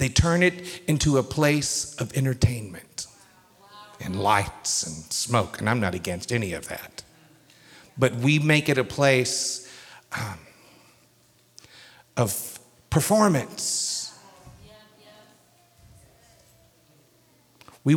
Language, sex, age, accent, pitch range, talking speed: English, male, 50-69, American, 125-180 Hz, 95 wpm